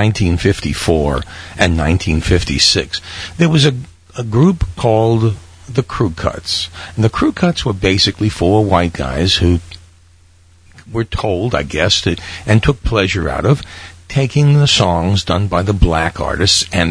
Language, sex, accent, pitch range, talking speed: English, male, American, 85-110 Hz, 140 wpm